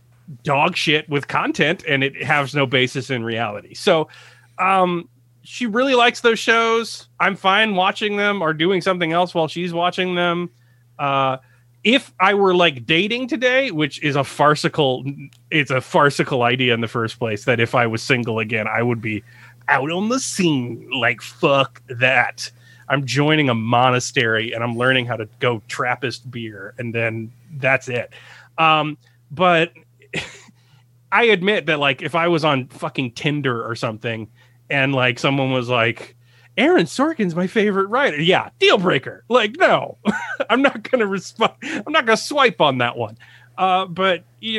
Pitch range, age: 120-175 Hz, 30-49